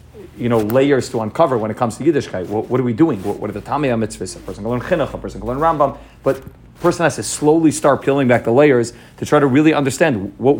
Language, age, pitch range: English, 40-59, 115-140 Hz